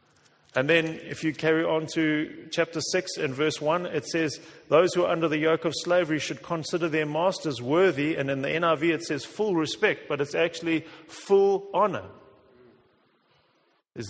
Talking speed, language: 175 wpm, English